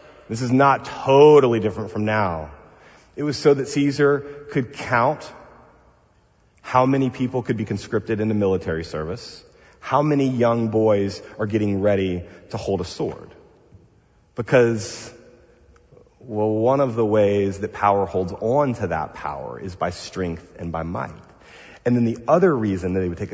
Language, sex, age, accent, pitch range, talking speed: English, male, 30-49, American, 105-140 Hz, 160 wpm